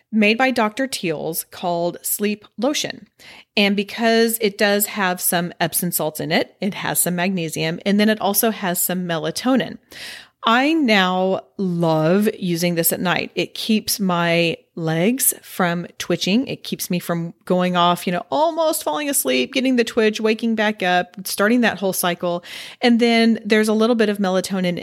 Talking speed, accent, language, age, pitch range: 170 wpm, American, English, 40-59, 175-225 Hz